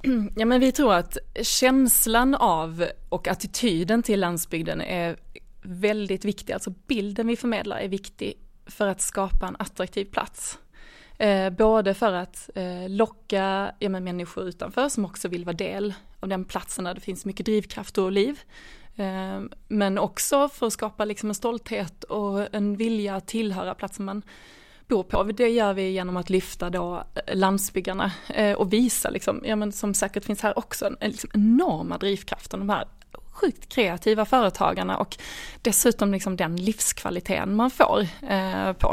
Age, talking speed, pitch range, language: 20-39, 145 wpm, 190-225 Hz, Swedish